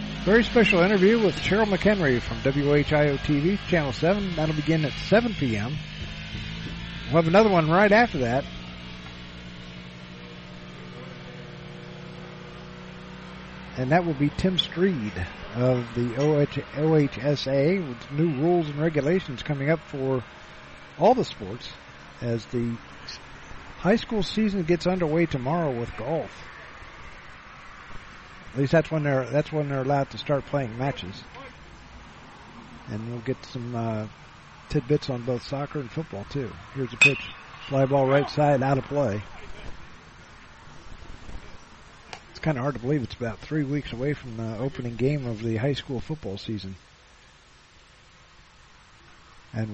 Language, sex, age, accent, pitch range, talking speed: English, male, 50-69, American, 115-155 Hz, 130 wpm